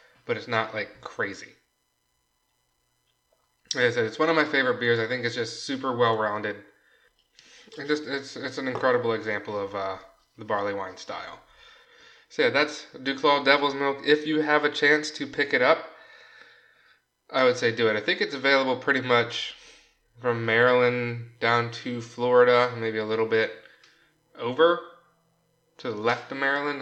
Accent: American